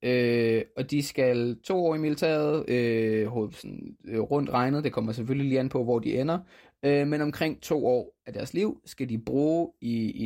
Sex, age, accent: male, 20-39, native